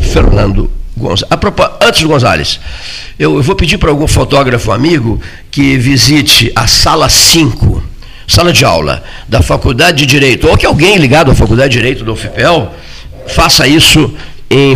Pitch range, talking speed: 100-140 Hz, 165 wpm